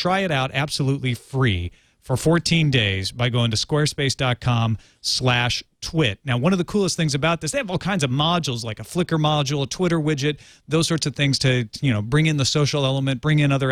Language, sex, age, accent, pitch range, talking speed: English, male, 40-59, American, 120-170 Hz, 220 wpm